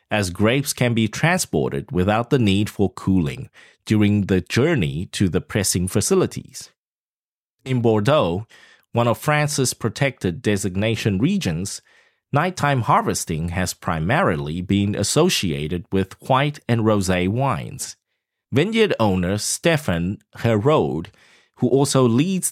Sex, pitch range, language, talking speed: male, 95-130 Hz, English, 115 wpm